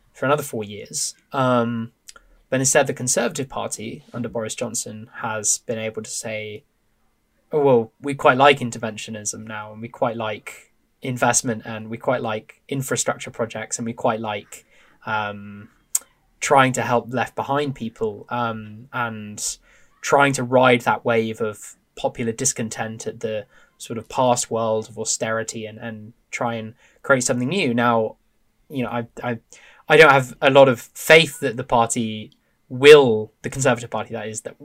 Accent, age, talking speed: British, 10-29, 165 wpm